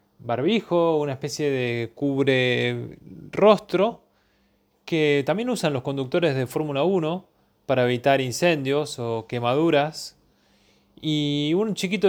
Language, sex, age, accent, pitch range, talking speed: Spanish, male, 20-39, Argentinian, 135-180 Hz, 110 wpm